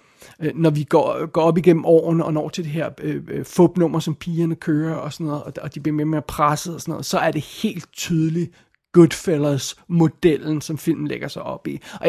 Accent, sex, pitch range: native, male, 155-180 Hz